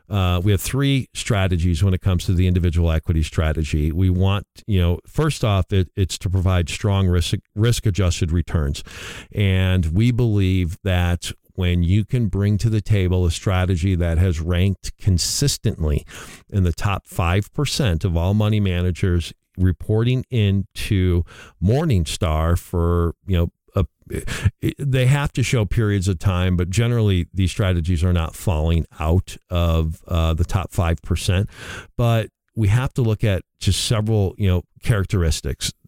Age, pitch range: 50-69, 85-105 Hz